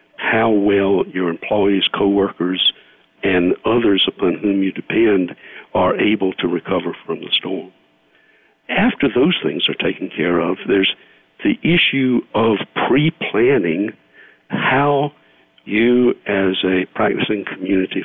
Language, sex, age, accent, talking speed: English, male, 60-79, American, 120 wpm